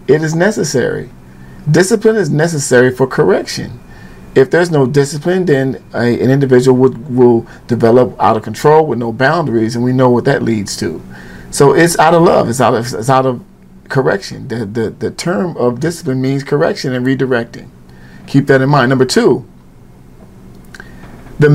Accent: American